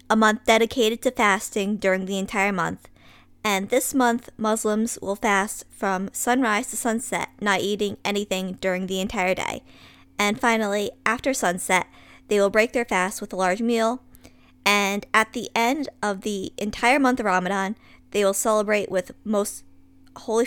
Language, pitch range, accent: English, 185-230 Hz, American